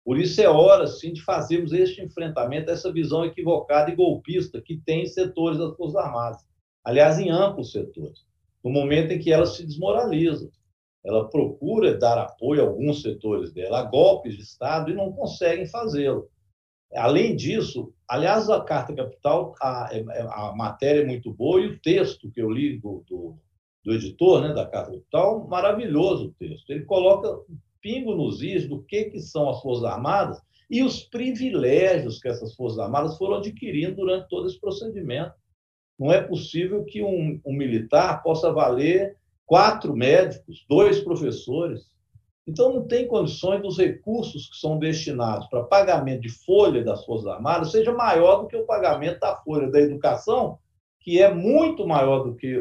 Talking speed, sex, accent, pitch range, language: 170 wpm, male, Brazilian, 125-190 Hz, Portuguese